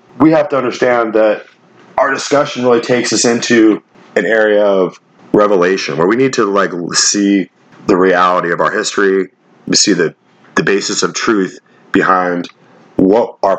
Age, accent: 40-59, American